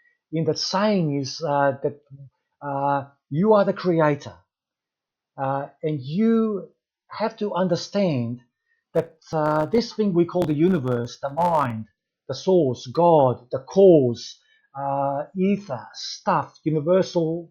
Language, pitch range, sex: English, 140-185 Hz, male